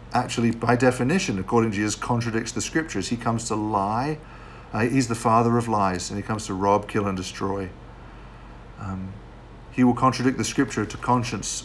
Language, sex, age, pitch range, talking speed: English, male, 50-69, 100-125 Hz, 180 wpm